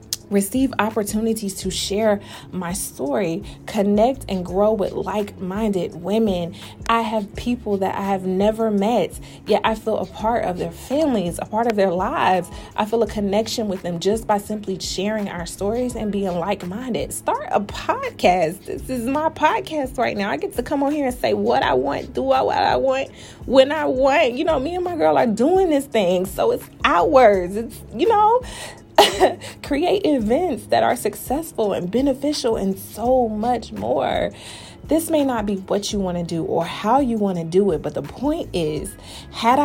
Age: 20-39